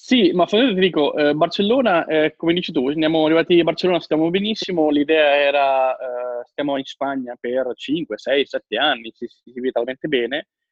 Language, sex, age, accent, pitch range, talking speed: Italian, male, 20-39, native, 125-155 Hz, 180 wpm